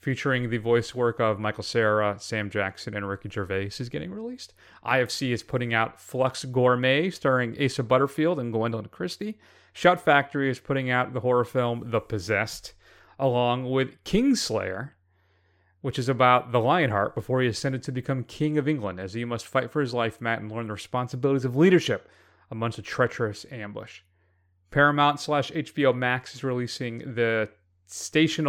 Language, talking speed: English, 165 wpm